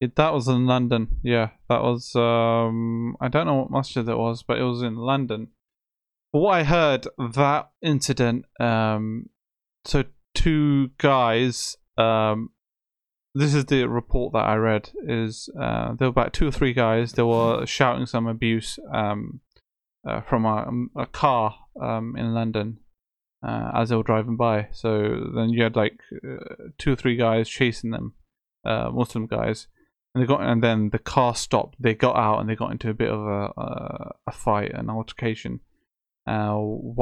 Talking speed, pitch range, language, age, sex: 175 wpm, 110-125 Hz, English, 20-39, male